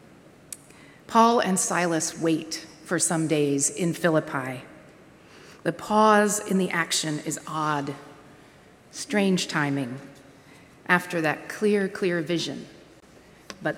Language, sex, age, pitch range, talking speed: English, female, 40-59, 175-240 Hz, 105 wpm